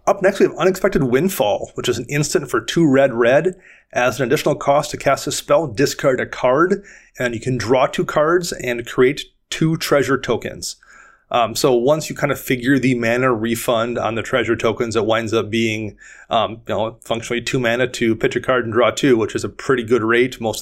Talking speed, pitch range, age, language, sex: 215 wpm, 120-140 Hz, 30-49, English, male